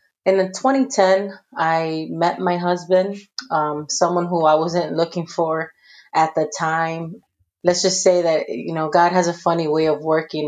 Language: English